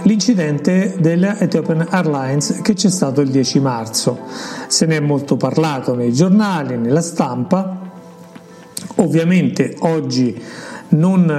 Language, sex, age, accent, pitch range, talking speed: Italian, male, 50-69, native, 135-185 Hz, 110 wpm